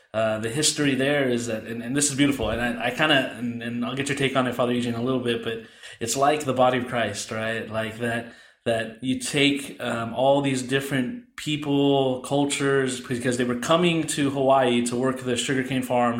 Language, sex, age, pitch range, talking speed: English, male, 20-39, 115-135 Hz, 220 wpm